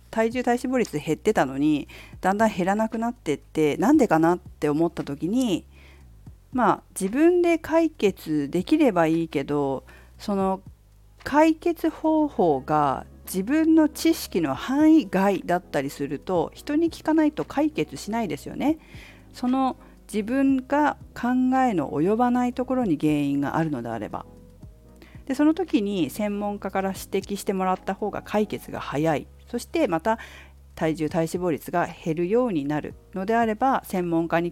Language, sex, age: Japanese, female, 50-69